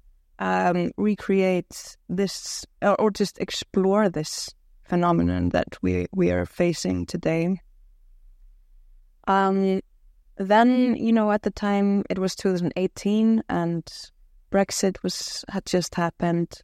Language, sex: Danish, female